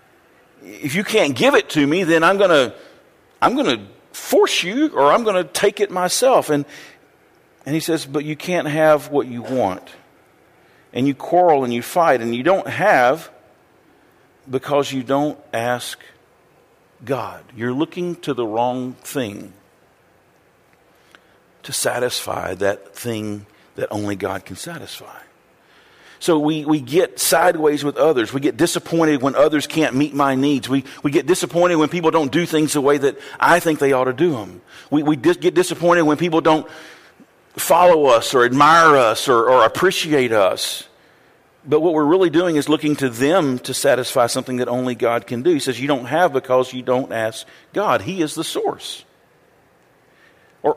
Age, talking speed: 50-69, 175 wpm